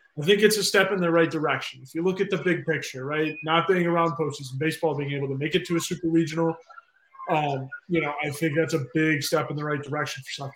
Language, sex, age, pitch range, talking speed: English, male, 20-39, 150-175 Hz, 260 wpm